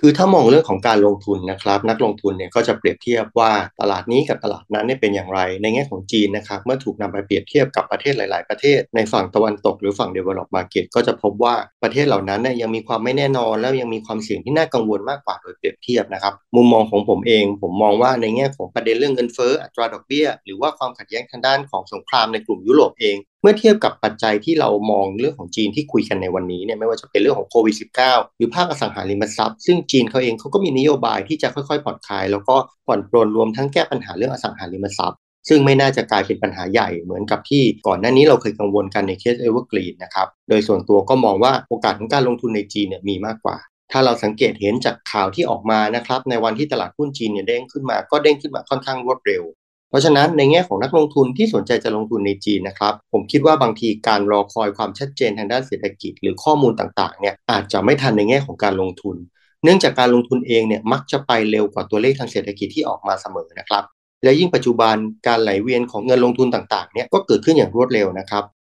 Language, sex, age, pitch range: English, male, 30-49, 105-135 Hz